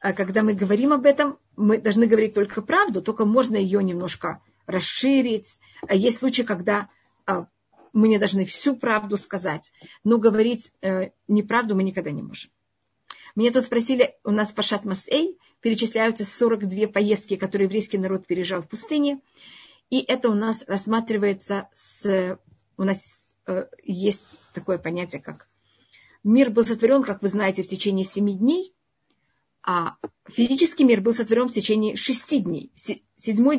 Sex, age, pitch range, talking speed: female, 50-69, 200-245 Hz, 140 wpm